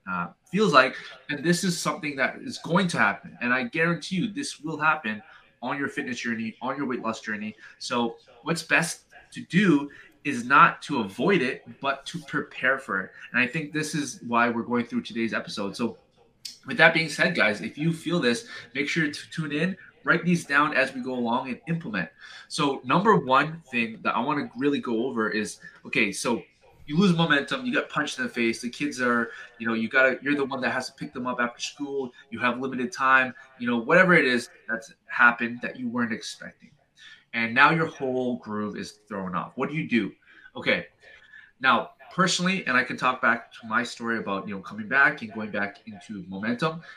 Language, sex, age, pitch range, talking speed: English, male, 20-39, 120-160 Hz, 215 wpm